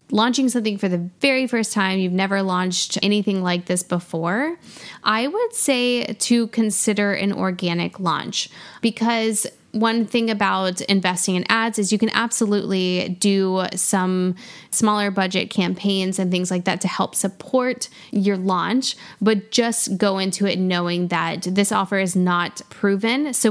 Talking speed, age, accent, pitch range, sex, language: 155 wpm, 10-29, American, 185-215 Hz, female, English